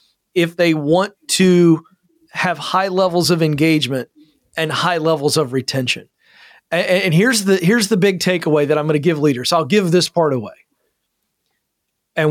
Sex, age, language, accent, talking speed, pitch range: male, 40-59, English, American, 165 wpm, 150-185 Hz